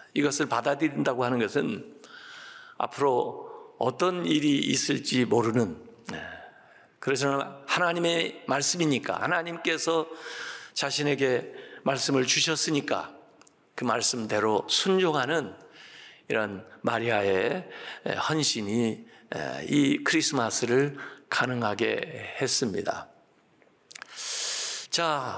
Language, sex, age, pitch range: Korean, male, 50-69, 135-170 Hz